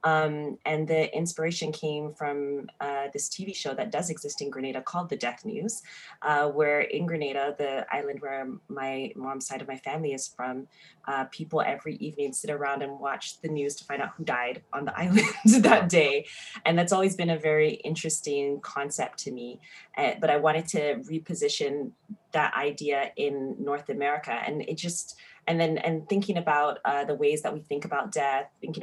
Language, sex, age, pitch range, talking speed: English, female, 20-39, 140-165 Hz, 190 wpm